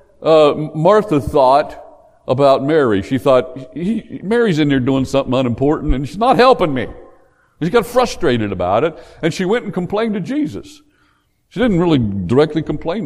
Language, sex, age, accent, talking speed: English, male, 60-79, American, 170 wpm